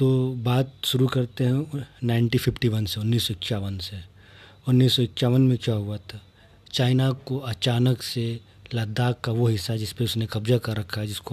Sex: male